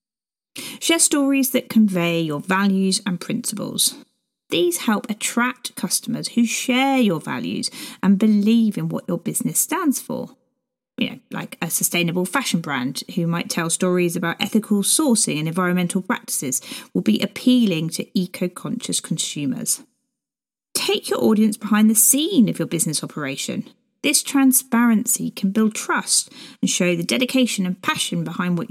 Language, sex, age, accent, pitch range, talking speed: English, female, 30-49, British, 180-255 Hz, 145 wpm